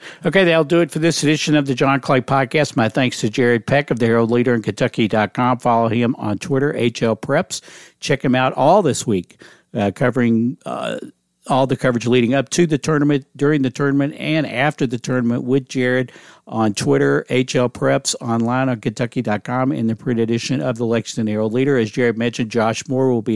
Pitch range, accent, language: 115-135 Hz, American, English